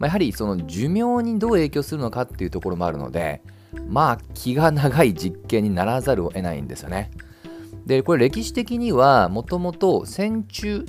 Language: Japanese